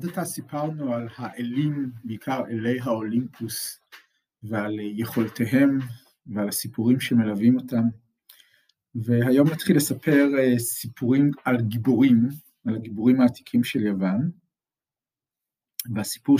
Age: 50-69